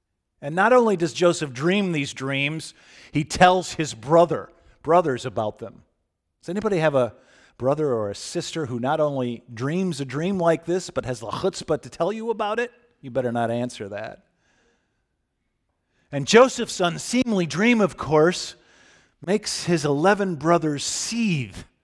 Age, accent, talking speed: 50-69, American, 155 wpm